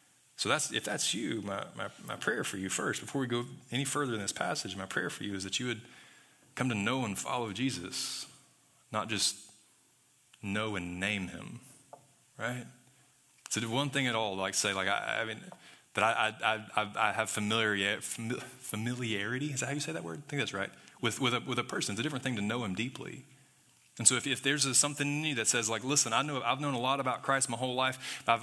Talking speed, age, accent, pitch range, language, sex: 235 wpm, 20-39, American, 105-135 Hz, English, male